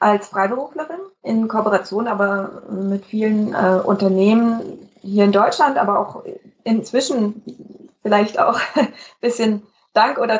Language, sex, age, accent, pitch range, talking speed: German, female, 20-39, German, 190-230 Hz, 120 wpm